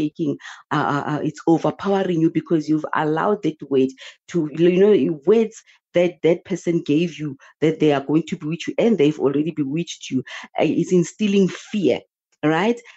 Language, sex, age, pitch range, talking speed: English, female, 40-59, 160-215 Hz, 165 wpm